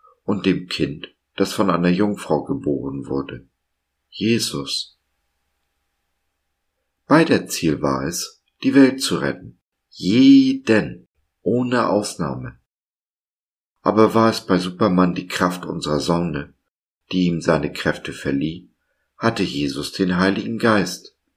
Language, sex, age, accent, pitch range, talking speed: German, male, 50-69, German, 70-95 Hz, 115 wpm